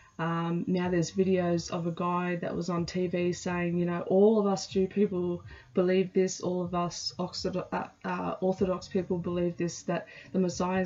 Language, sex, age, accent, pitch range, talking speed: English, female, 20-39, Australian, 175-200 Hz, 170 wpm